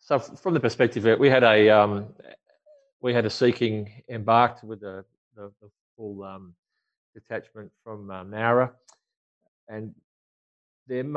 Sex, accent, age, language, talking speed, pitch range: male, Australian, 30-49, English, 130 wpm, 95-115 Hz